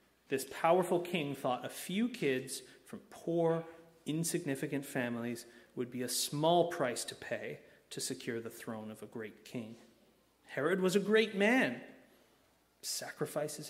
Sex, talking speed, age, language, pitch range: male, 140 wpm, 30-49, English, 130-180 Hz